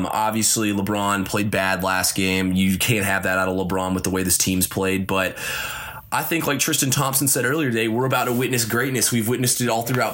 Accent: American